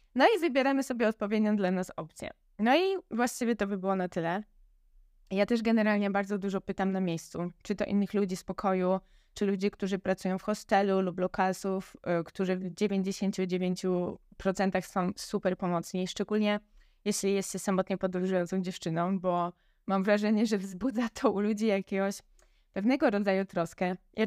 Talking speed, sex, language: 160 wpm, female, Polish